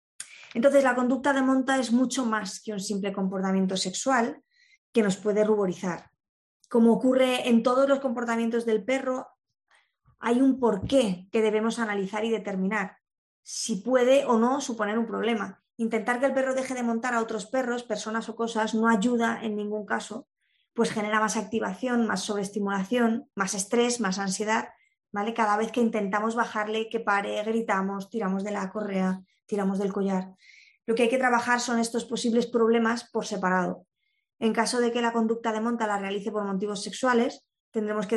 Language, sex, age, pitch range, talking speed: Spanish, female, 20-39, 205-240 Hz, 175 wpm